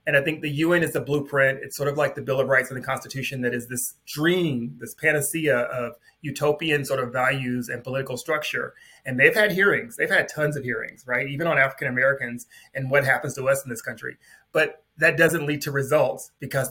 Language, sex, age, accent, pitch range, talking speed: English, male, 30-49, American, 135-165 Hz, 220 wpm